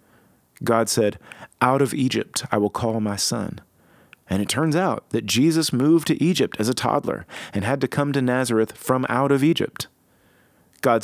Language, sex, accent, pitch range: English, male, American, 100-140 Hz